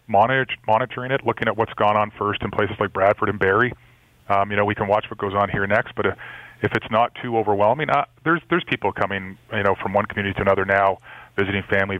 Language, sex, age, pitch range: English, male, 30-49, 105-125 Hz